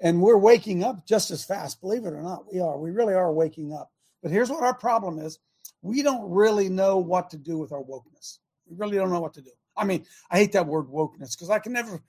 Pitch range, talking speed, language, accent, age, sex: 160-210 Hz, 260 wpm, English, American, 50-69, male